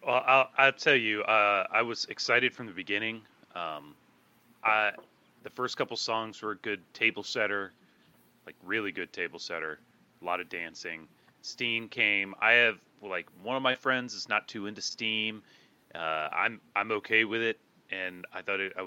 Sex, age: male, 30-49